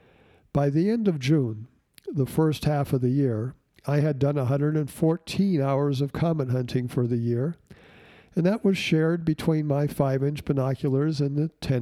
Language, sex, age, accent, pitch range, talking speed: English, male, 60-79, American, 130-160 Hz, 160 wpm